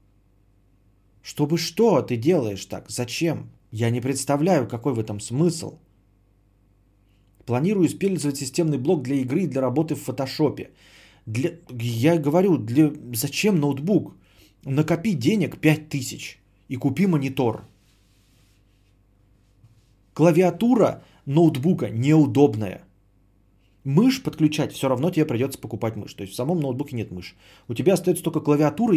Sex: male